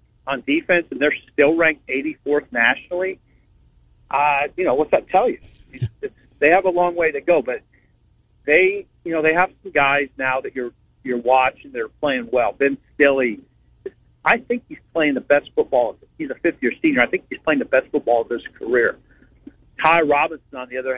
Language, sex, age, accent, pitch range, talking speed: English, male, 50-69, American, 130-185 Hz, 190 wpm